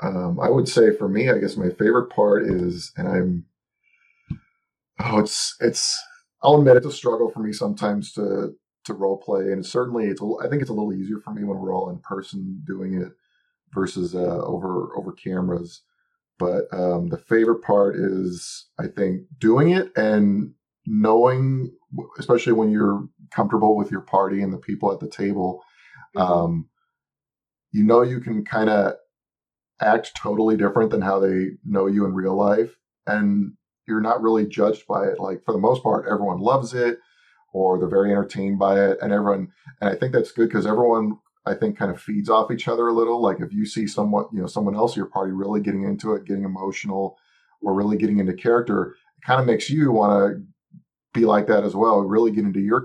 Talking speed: 200 wpm